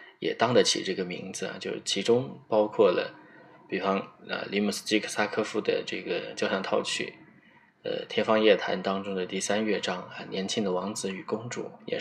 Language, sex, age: Chinese, male, 20-39